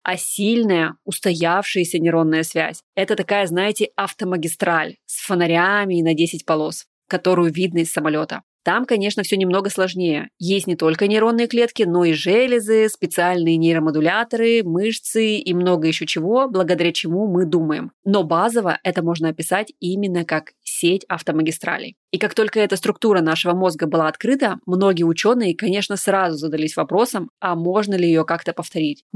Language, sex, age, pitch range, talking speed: Russian, female, 20-39, 165-205 Hz, 150 wpm